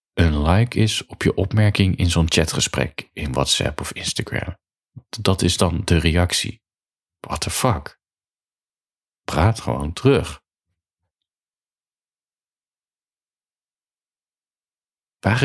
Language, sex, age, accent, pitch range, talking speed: Dutch, male, 40-59, Dutch, 80-110 Hz, 95 wpm